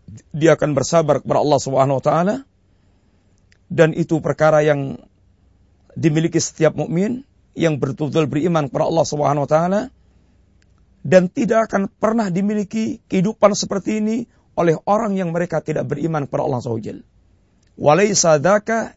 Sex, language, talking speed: male, Malay, 130 wpm